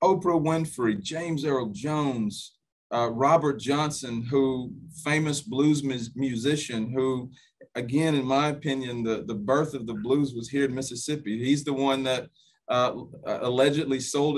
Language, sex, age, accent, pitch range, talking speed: English, male, 40-59, American, 115-140 Hz, 140 wpm